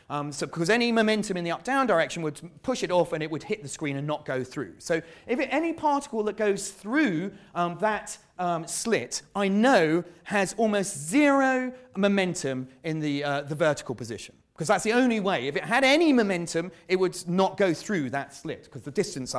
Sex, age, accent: male, 30-49, British